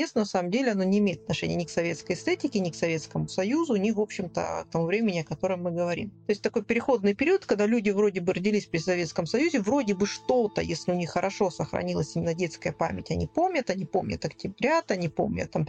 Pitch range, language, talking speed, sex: 170-225 Hz, Russian, 210 wpm, female